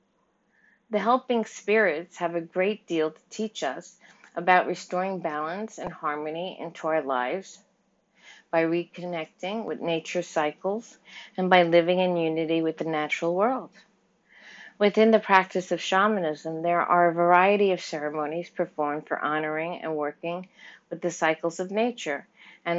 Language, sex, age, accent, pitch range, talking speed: English, female, 50-69, American, 160-185 Hz, 140 wpm